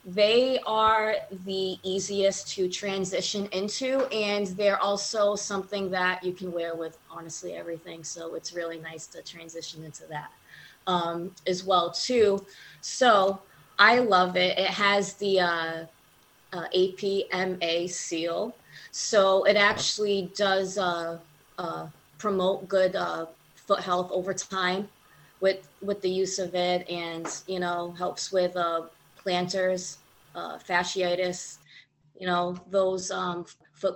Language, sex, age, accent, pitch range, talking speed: English, female, 20-39, American, 175-195 Hz, 135 wpm